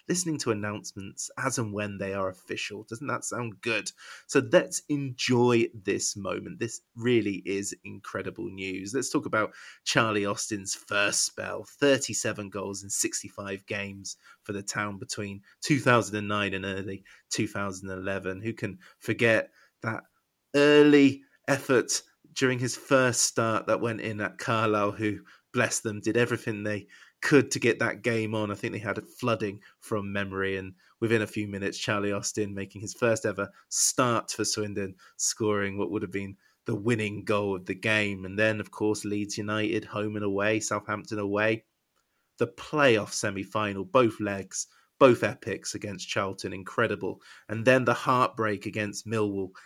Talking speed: 160 wpm